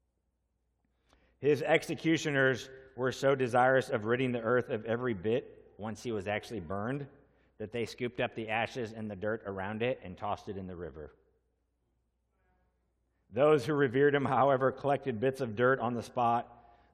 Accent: American